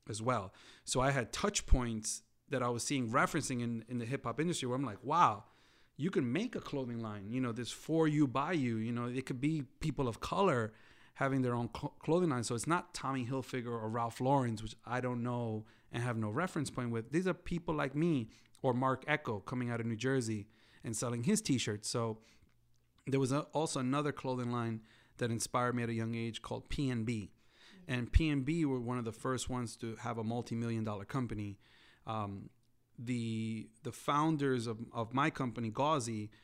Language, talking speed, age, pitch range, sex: English, 205 wpm, 30-49, 115-135 Hz, male